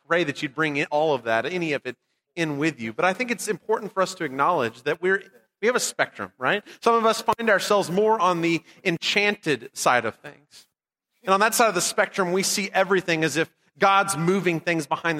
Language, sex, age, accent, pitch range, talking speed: English, male, 30-49, American, 160-215 Hz, 230 wpm